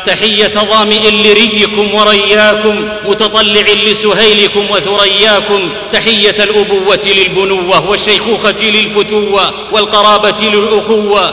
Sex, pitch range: male, 190-210 Hz